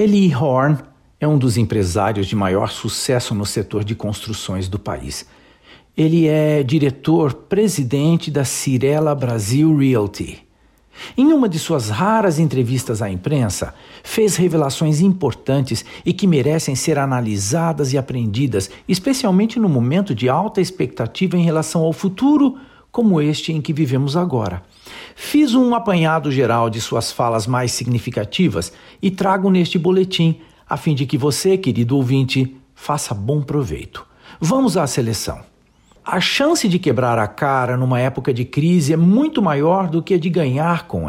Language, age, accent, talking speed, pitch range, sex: Portuguese, 60-79, Brazilian, 150 wpm, 125-180 Hz, male